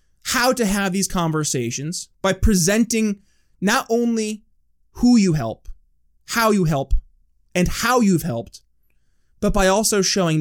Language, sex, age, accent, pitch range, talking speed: English, male, 20-39, American, 130-200 Hz, 135 wpm